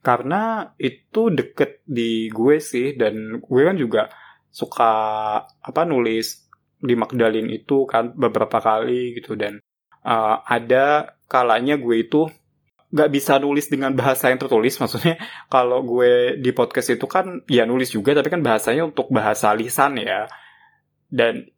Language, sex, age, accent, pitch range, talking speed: Indonesian, male, 20-39, native, 115-140 Hz, 140 wpm